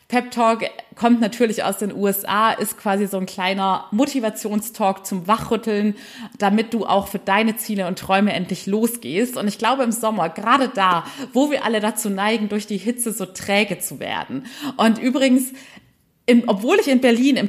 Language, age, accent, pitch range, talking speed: German, 30-49, German, 205-245 Hz, 180 wpm